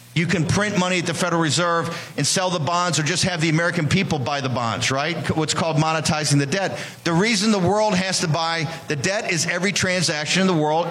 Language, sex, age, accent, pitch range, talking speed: English, male, 50-69, American, 160-200 Hz, 230 wpm